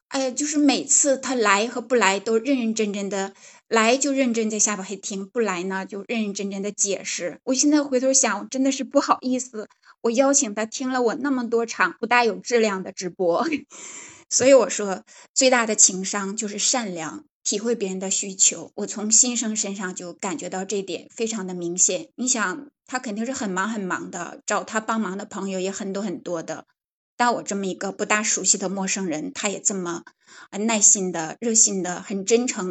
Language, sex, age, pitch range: Chinese, female, 20-39, 190-245 Hz